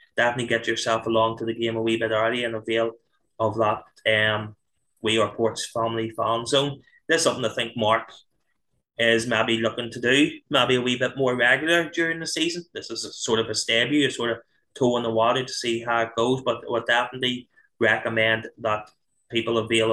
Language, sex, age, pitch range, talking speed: English, male, 20-39, 110-125 Hz, 205 wpm